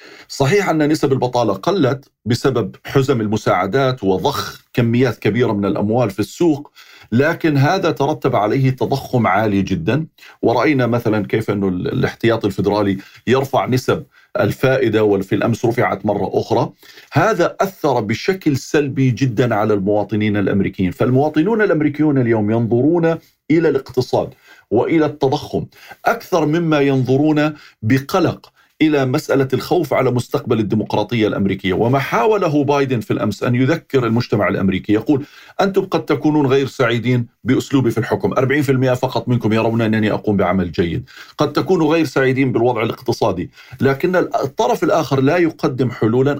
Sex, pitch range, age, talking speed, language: male, 110-145 Hz, 40-59, 130 wpm, Arabic